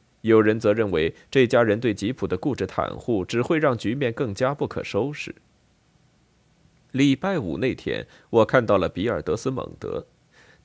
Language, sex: Chinese, male